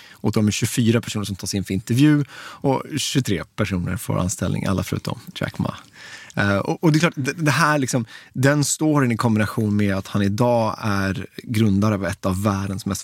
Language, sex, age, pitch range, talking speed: Swedish, male, 30-49, 100-125 Hz, 195 wpm